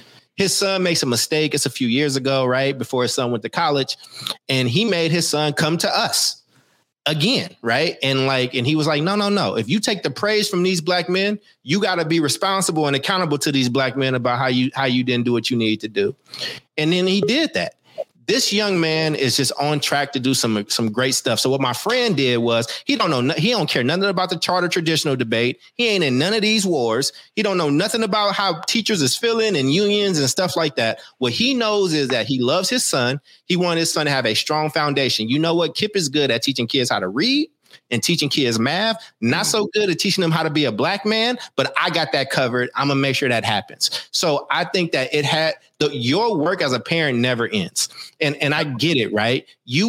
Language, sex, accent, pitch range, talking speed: English, male, American, 135-190 Hz, 245 wpm